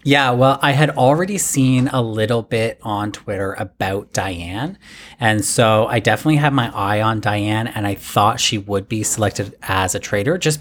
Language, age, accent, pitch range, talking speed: English, 30-49, American, 100-130 Hz, 185 wpm